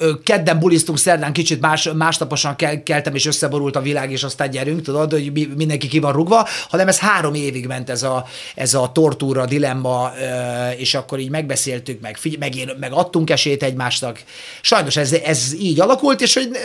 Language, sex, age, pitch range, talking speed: Hungarian, male, 30-49, 135-165 Hz, 180 wpm